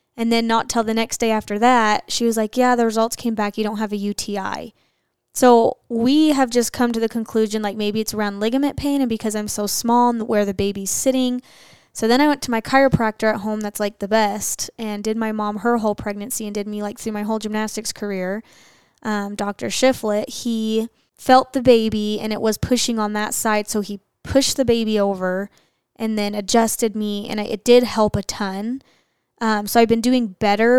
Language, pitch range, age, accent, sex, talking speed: English, 205-230 Hz, 10-29, American, female, 215 wpm